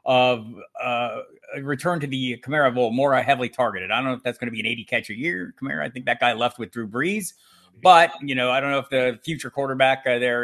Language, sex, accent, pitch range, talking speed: English, male, American, 115-140 Hz, 255 wpm